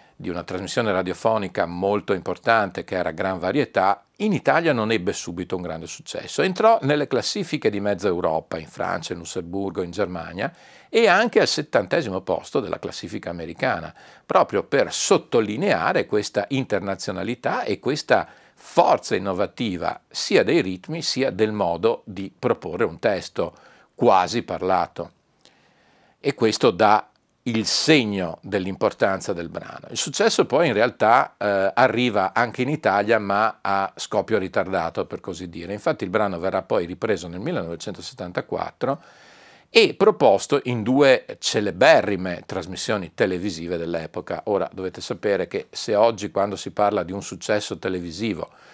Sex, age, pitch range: male, 50-69, 95-125 Hz